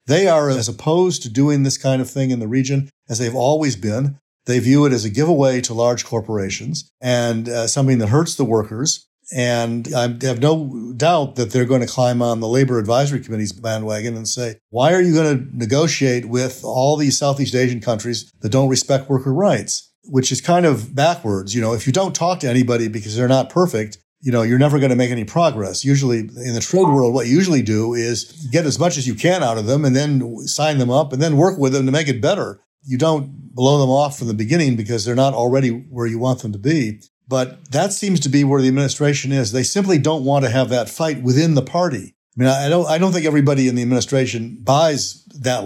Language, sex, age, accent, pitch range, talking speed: English, male, 50-69, American, 120-145 Hz, 235 wpm